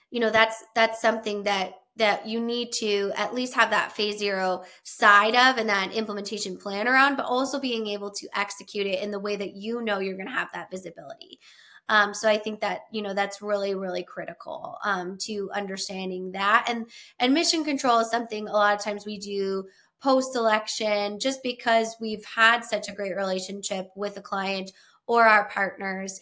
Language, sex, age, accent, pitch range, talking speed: English, female, 20-39, American, 200-230 Hz, 190 wpm